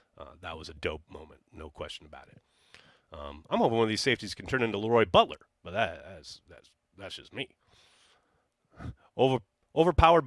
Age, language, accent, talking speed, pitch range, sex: 30-49, English, American, 180 wpm, 95-140 Hz, male